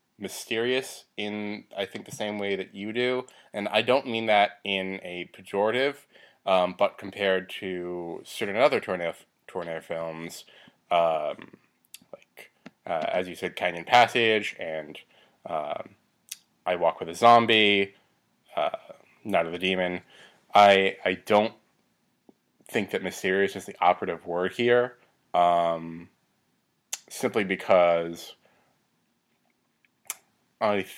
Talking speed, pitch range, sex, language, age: 120 wpm, 85-110 Hz, male, English, 20-39